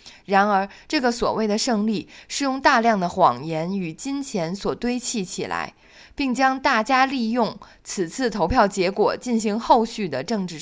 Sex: female